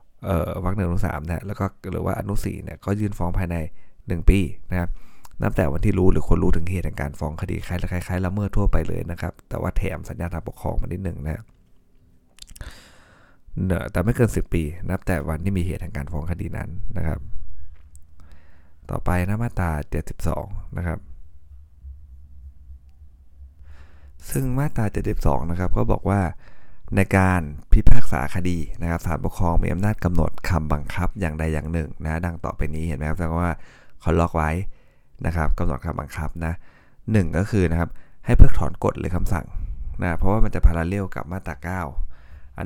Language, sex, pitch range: Thai, male, 75-95 Hz